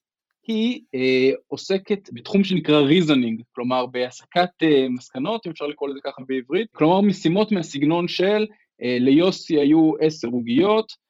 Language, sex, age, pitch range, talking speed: Hebrew, male, 20-39, 135-200 Hz, 135 wpm